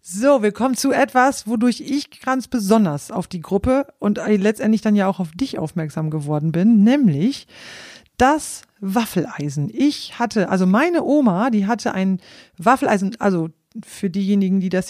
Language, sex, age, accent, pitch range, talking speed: German, female, 40-59, German, 190-230 Hz, 155 wpm